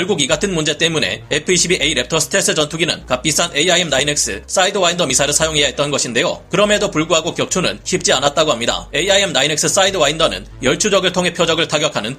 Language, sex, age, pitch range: Korean, male, 30-49, 150-190 Hz